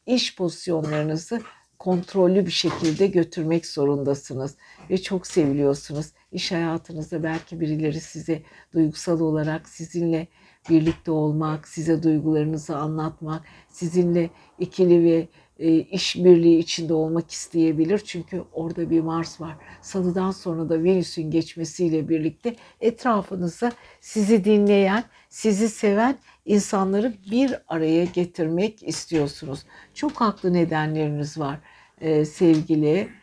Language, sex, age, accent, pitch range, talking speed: Turkish, female, 60-79, native, 160-200 Hz, 105 wpm